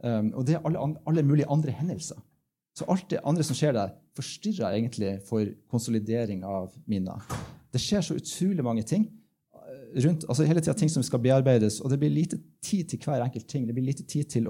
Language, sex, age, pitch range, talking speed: English, male, 30-49, 110-150 Hz, 205 wpm